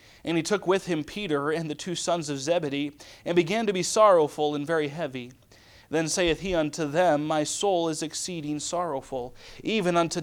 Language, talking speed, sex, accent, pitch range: English, 190 wpm, male, American, 150-190 Hz